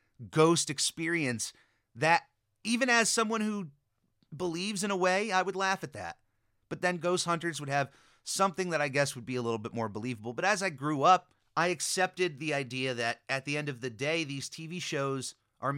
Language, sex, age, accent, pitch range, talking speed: English, male, 30-49, American, 120-160 Hz, 200 wpm